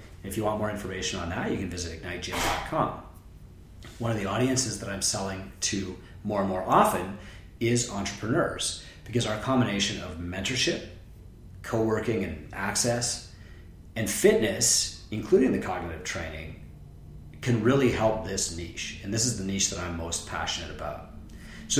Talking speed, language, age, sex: 150 wpm, English, 30-49, male